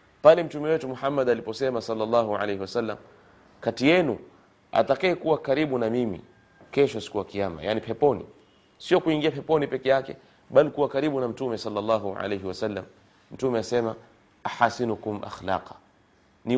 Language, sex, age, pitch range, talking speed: Swahili, male, 30-49, 110-160 Hz, 135 wpm